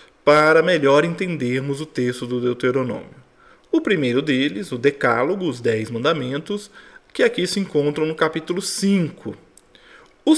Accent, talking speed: Brazilian, 135 wpm